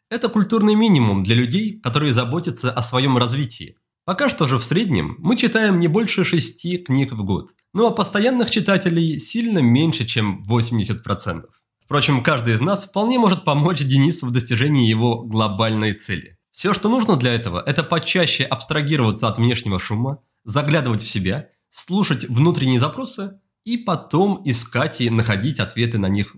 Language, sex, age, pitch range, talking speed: Russian, male, 20-39, 115-175 Hz, 155 wpm